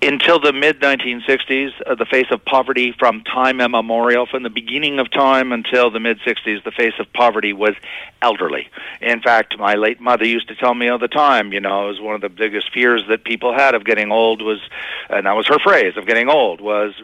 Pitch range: 110-135 Hz